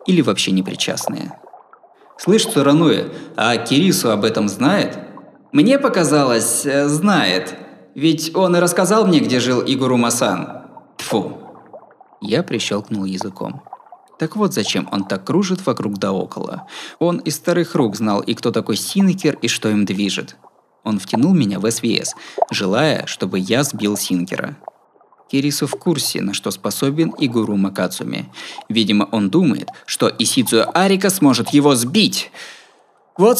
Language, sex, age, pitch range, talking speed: Russian, male, 20-39, 105-160 Hz, 135 wpm